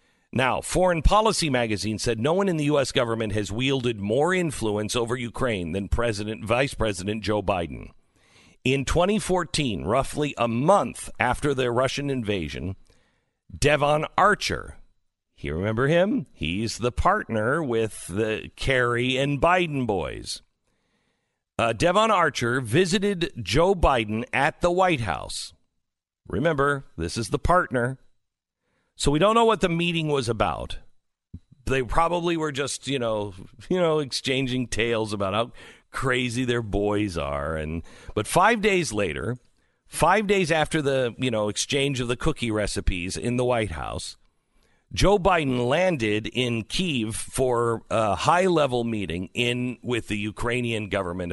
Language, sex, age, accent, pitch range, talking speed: English, male, 50-69, American, 110-150 Hz, 140 wpm